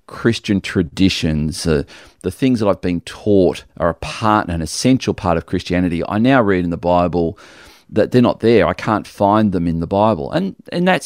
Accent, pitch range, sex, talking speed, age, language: Australian, 85-120 Hz, male, 200 wpm, 40-59, English